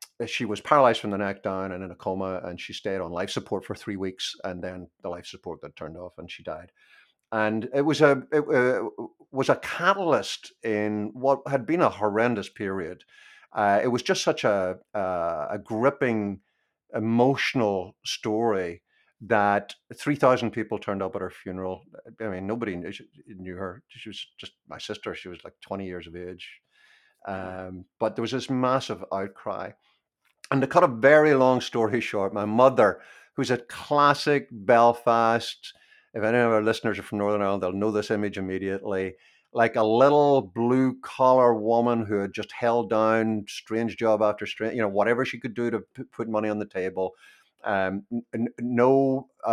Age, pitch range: 50-69, 100-125 Hz